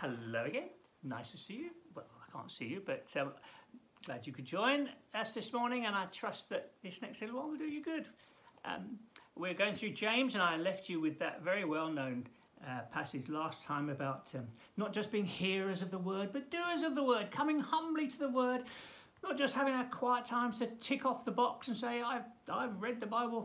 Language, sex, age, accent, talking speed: English, male, 60-79, British, 220 wpm